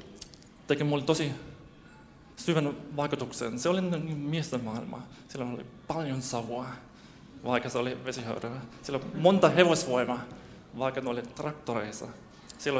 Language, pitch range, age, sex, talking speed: Finnish, 120-150 Hz, 20-39, male, 125 wpm